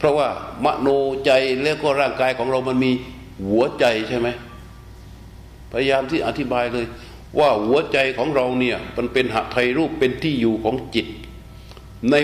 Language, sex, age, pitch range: Thai, male, 60-79, 115-155 Hz